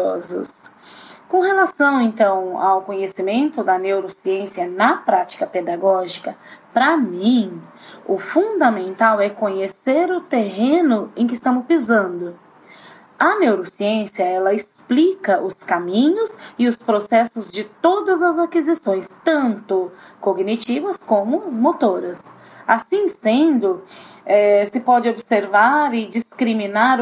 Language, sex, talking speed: Portuguese, female, 100 wpm